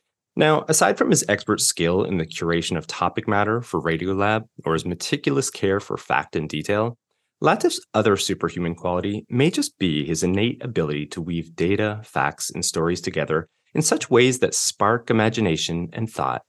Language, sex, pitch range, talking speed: English, male, 85-115 Hz, 170 wpm